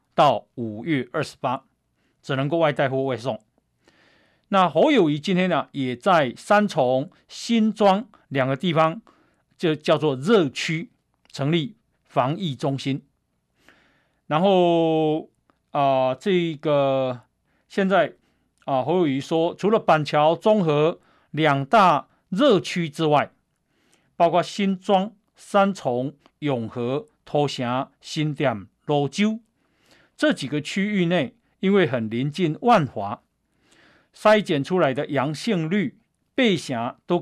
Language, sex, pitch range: Chinese, male, 135-180 Hz